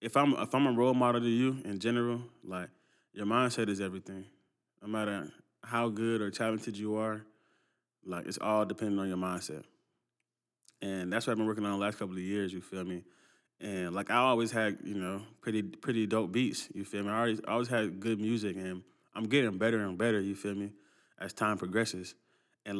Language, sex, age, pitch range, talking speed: English, male, 20-39, 100-115 Hz, 210 wpm